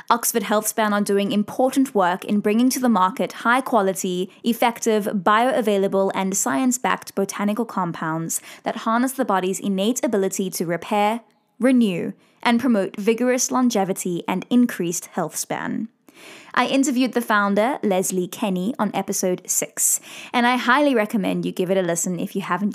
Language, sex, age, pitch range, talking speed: English, female, 20-39, 195-245 Hz, 145 wpm